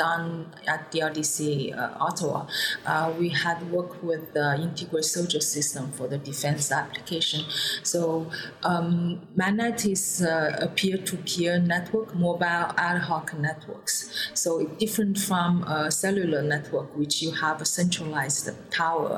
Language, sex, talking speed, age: English, female, 140 wpm, 30-49